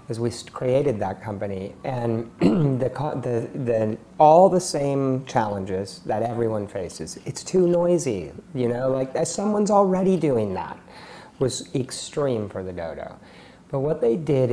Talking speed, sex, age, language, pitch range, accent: 150 wpm, male, 40-59, English, 105-150 Hz, American